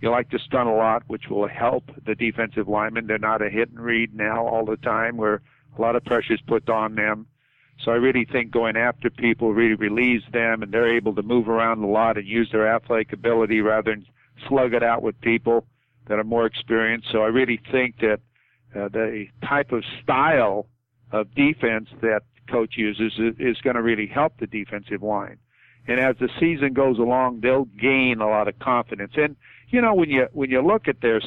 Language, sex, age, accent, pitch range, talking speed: English, male, 50-69, American, 110-130 Hz, 210 wpm